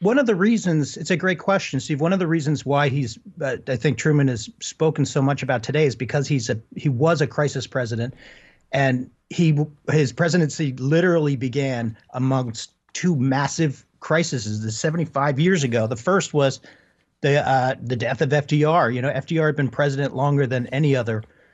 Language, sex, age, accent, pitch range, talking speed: English, male, 40-59, American, 125-155 Hz, 180 wpm